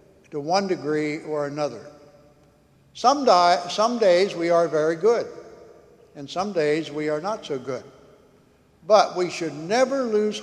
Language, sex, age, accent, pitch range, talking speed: English, male, 60-79, American, 155-205 Hz, 145 wpm